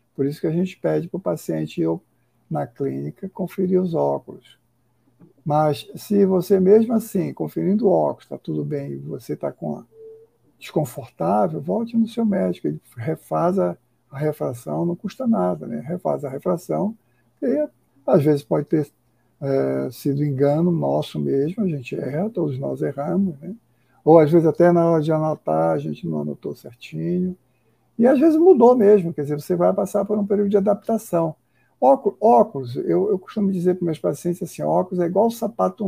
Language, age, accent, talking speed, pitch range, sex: Portuguese, 60-79, Brazilian, 175 wpm, 125-190 Hz, male